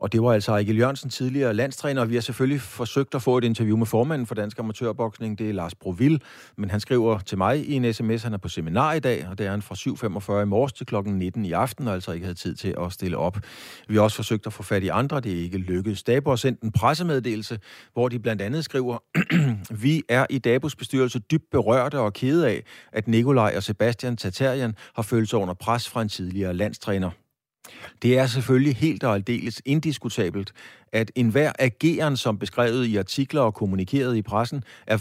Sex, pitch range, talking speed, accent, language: male, 100-130 Hz, 220 wpm, native, Danish